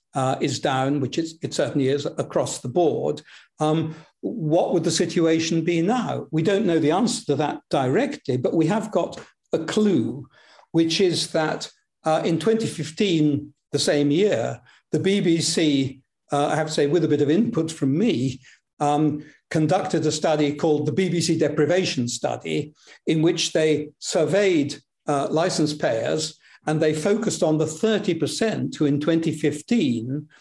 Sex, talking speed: male, 160 wpm